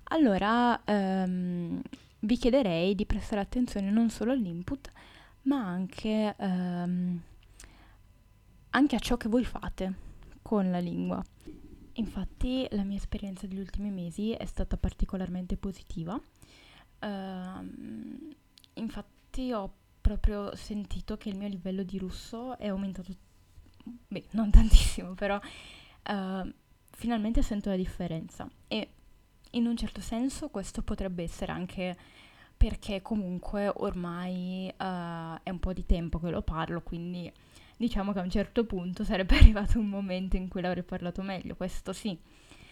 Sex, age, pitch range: female, 10-29, 175-210 Hz